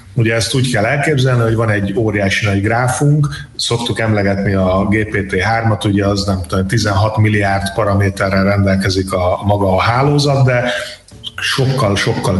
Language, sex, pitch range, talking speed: Hungarian, male, 100-120 Hz, 140 wpm